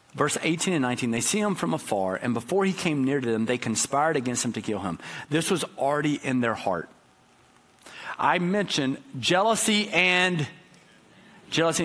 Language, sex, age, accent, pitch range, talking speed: English, male, 50-69, American, 125-165 Hz, 170 wpm